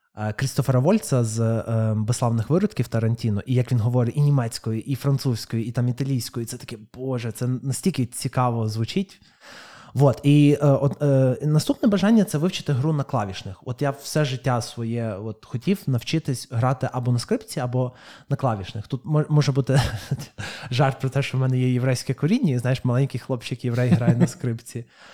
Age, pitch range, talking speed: 20-39, 115-145 Hz, 175 wpm